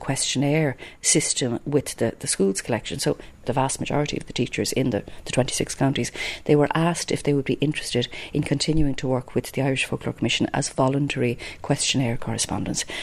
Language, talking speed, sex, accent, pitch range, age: English, 185 wpm, female, Irish, 130-155 Hz, 40-59